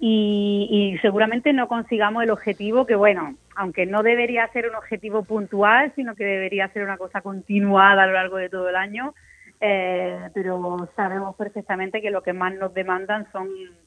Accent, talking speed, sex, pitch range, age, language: Spanish, 175 wpm, female, 195-235 Hz, 30-49, Spanish